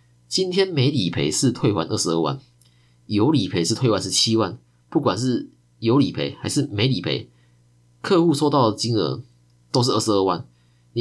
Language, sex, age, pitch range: Chinese, male, 20-39, 85-125 Hz